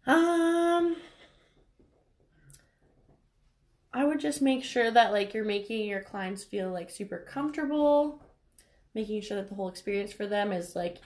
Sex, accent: female, American